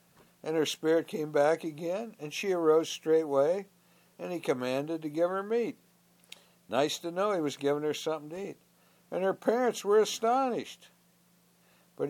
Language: English